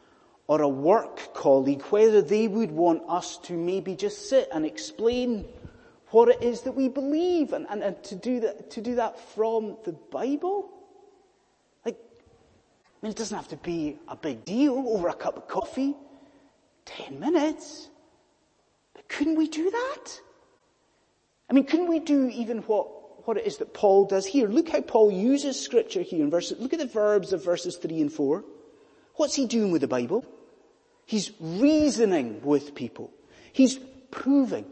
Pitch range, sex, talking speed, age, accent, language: 200-310 Hz, male, 170 wpm, 30-49, British, English